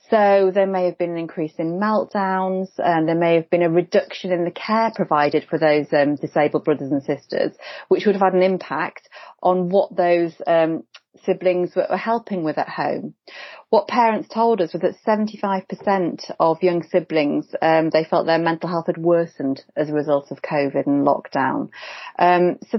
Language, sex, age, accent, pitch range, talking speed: English, female, 30-49, British, 160-190 Hz, 185 wpm